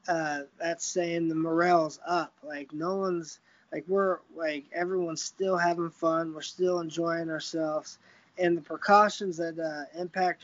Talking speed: 150 wpm